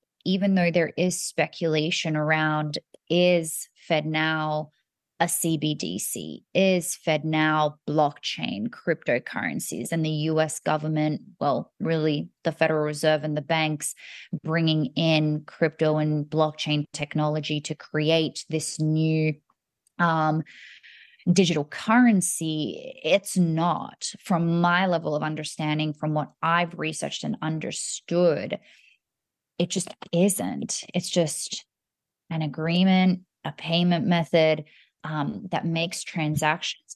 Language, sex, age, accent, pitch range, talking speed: English, female, 20-39, Australian, 155-175 Hz, 105 wpm